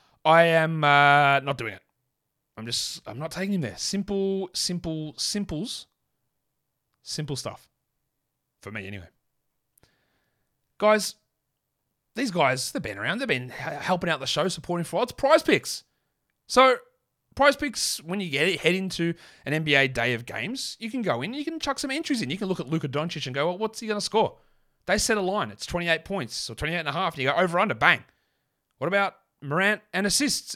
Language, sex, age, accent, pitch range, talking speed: English, male, 30-49, Australian, 145-220 Hz, 195 wpm